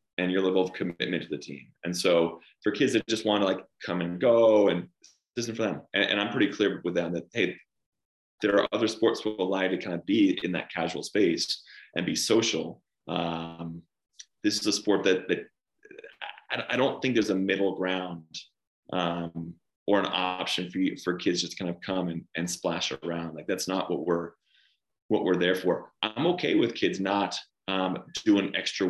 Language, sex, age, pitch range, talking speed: English, male, 30-49, 90-105 Hz, 210 wpm